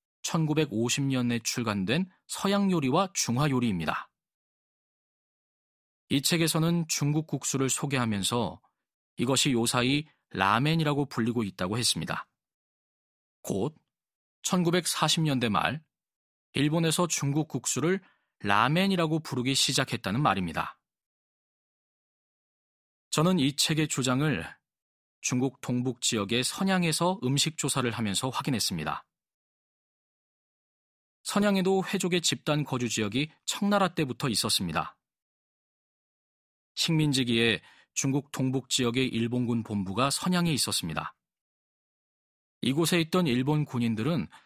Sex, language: male, Korean